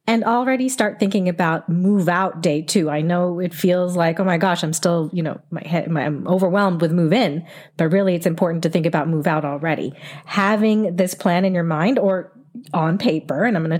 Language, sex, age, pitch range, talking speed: English, female, 40-59, 160-200 Hz, 225 wpm